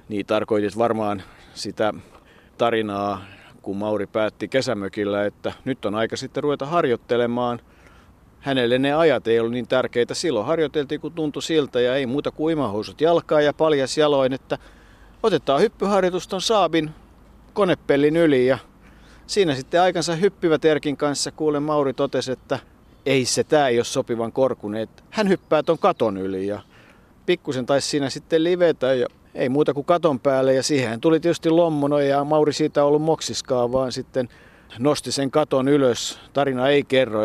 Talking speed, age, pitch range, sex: 155 wpm, 50-69, 115-155 Hz, male